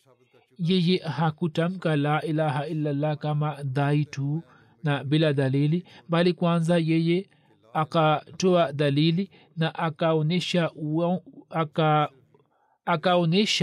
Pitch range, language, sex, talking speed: 145-170 Hz, Swahili, male, 75 wpm